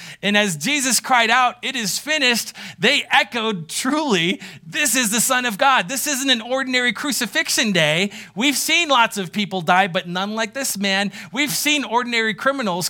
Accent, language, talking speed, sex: American, English, 175 wpm, male